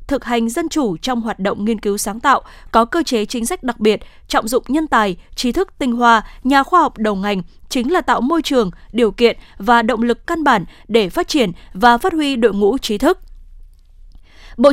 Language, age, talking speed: Vietnamese, 20-39, 220 wpm